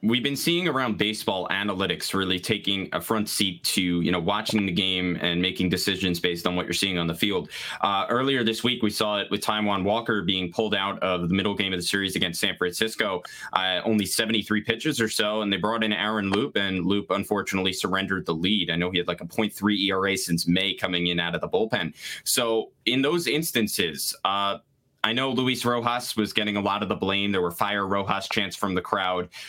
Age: 20-39